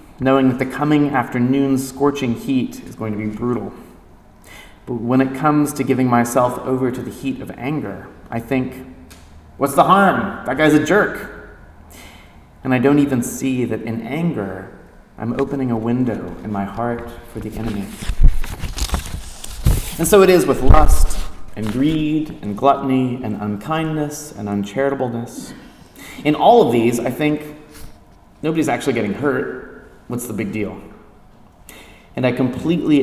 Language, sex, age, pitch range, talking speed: English, male, 30-49, 105-140 Hz, 150 wpm